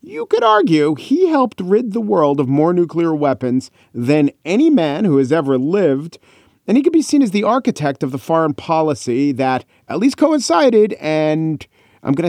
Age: 40-59